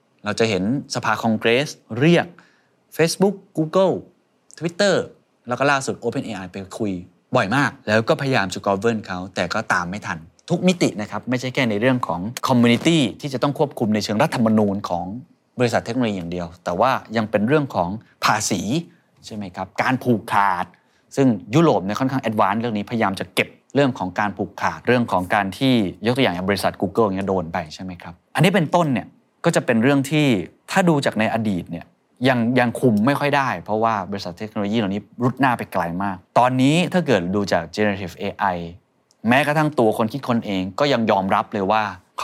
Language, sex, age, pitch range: Thai, male, 20-39, 100-140 Hz